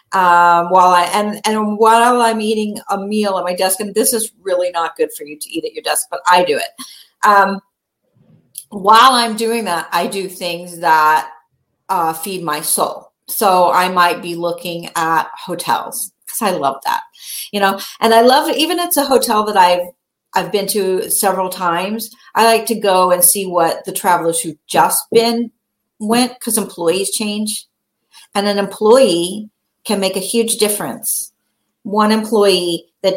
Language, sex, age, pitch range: English, female, 50-69, 175-215 Hz